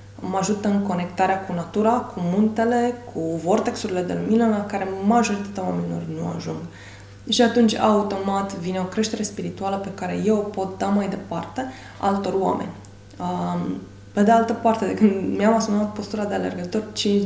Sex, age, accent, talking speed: female, 20-39, native, 165 wpm